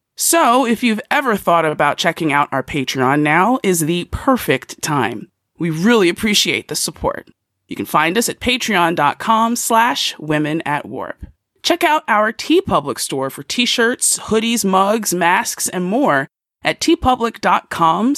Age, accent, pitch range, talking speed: 30-49, American, 155-240 Hz, 145 wpm